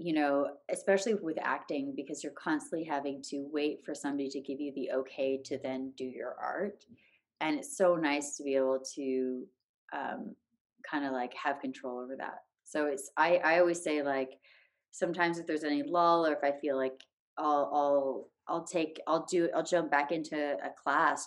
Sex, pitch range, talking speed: female, 135-170 Hz, 190 wpm